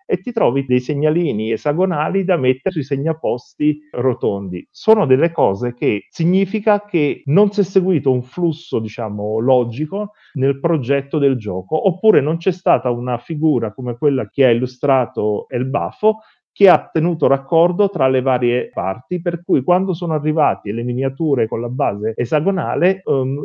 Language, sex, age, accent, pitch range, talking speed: Italian, male, 40-59, native, 130-175 Hz, 160 wpm